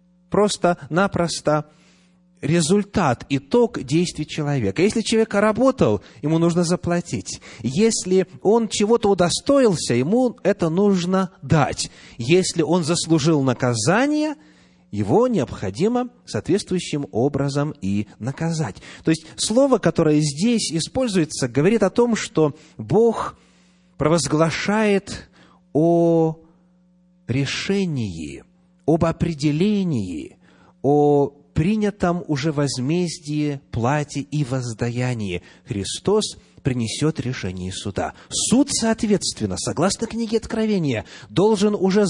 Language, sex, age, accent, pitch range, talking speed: Russian, male, 30-49, native, 135-195 Hz, 90 wpm